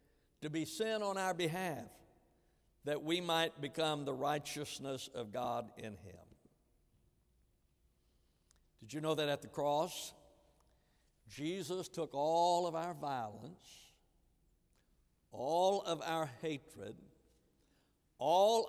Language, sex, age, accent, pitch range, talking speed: English, male, 60-79, American, 130-170 Hz, 110 wpm